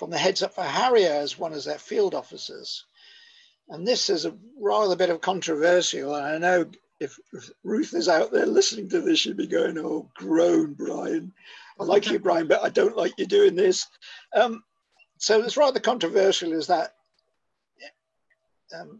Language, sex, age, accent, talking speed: English, male, 50-69, British, 180 wpm